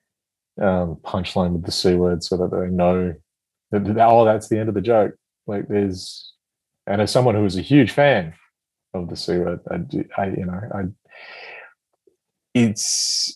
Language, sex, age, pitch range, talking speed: English, male, 30-49, 95-120 Hz, 175 wpm